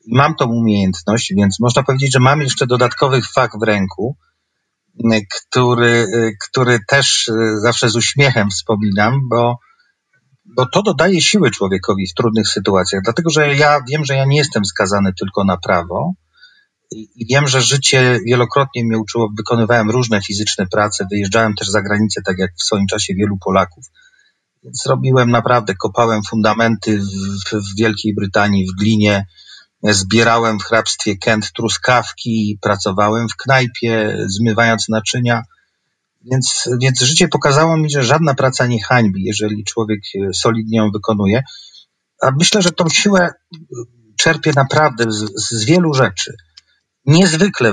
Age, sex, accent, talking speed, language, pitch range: 40-59, male, native, 140 wpm, Polish, 105-130 Hz